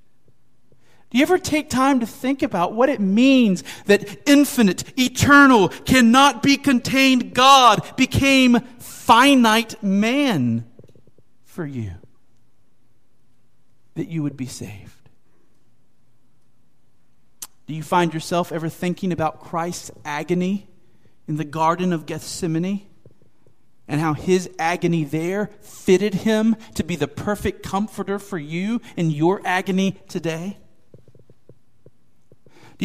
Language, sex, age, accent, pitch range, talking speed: English, male, 40-59, American, 135-225 Hz, 110 wpm